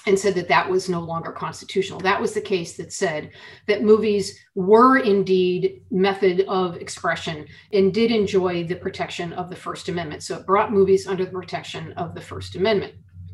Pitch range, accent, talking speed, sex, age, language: 185-225 Hz, American, 185 wpm, female, 40-59, English